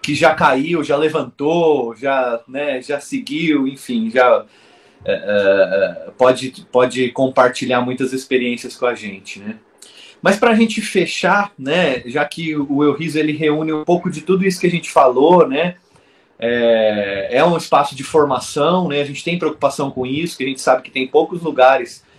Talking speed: 175 wpm